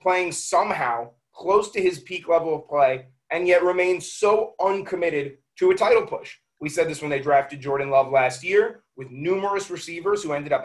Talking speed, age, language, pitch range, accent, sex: 190 wpm, 30-49, English, 145-190 Hz, American, male